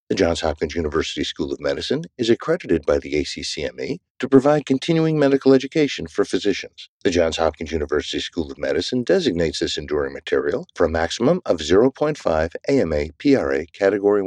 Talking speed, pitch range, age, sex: 160 wpm, 95-150 Hz, 60-79, male